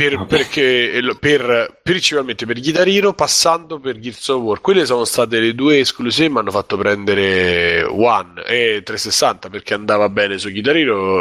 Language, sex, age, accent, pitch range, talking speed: Italian, male, 30-49, native, 105-150 Hz, 150 wpm